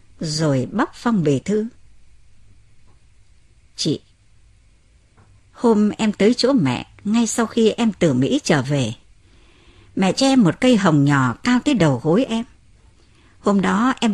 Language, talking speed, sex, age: Vietnamese, 140 wpm, male, 60-79